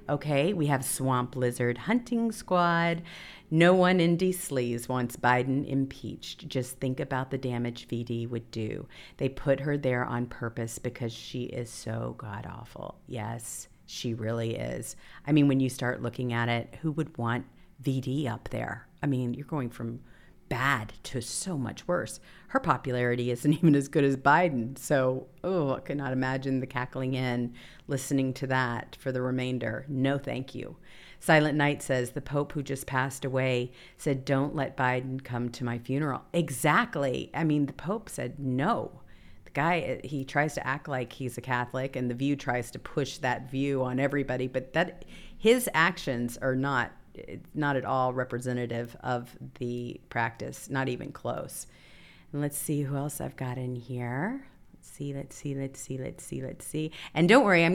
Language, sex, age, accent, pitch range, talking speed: English, female, 50-69, American, 125-145 Hz, 175 wpm